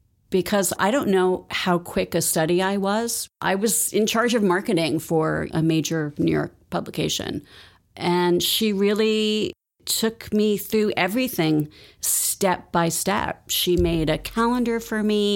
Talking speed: 150 wpm